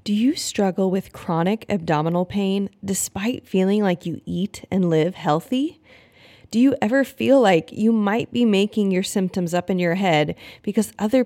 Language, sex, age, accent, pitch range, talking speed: English, female, 20-39, American, 175-250 Hz, 170 wpm